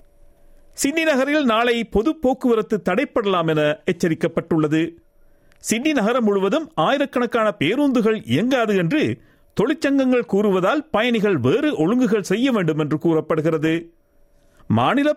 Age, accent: 50-69, native